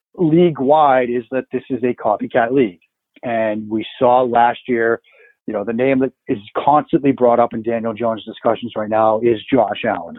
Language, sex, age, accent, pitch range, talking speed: English, male, 40-59, American, 115-150 Hz, 185 wpm